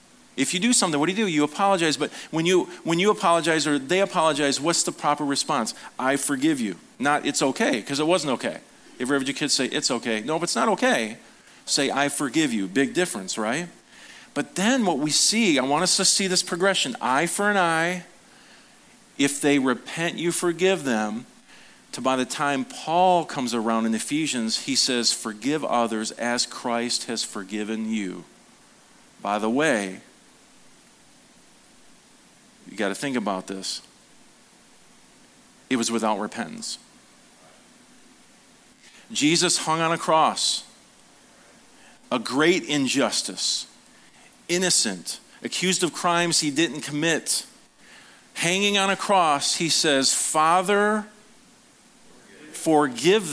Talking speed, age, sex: 145 wpm, 40-59, male